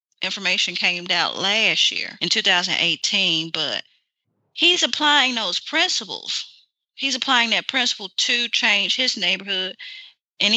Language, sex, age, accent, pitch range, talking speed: English, female, 30-49, American, 175-210 Hz, 120 wpm